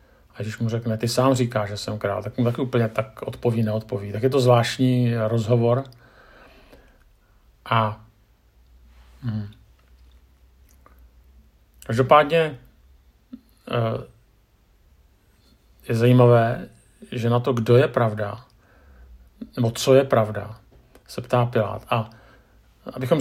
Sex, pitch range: male, 105-125 Hz